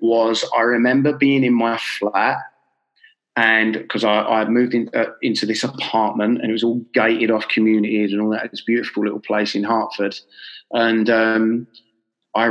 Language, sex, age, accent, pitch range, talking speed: English, male, 20-39, British, 110-125 Hz, 170 wpm